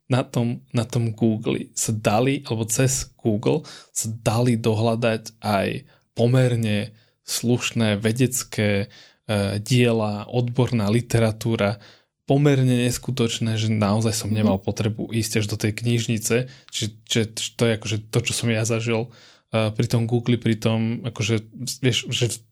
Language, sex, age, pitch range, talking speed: Slovak, male, 20-39, 110-125 Hz, 135 wpm